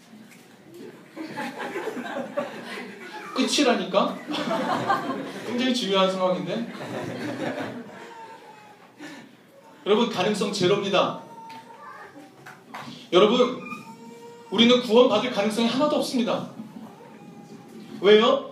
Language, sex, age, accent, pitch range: Korean, male, 40-59, native, 220-260 Hz